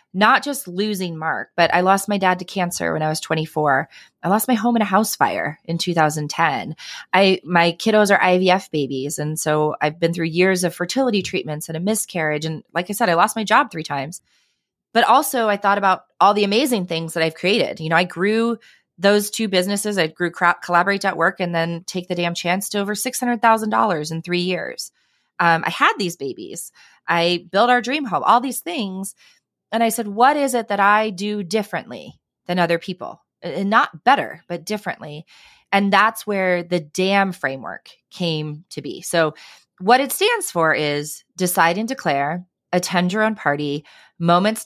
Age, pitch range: 30-49, 165-210 Hz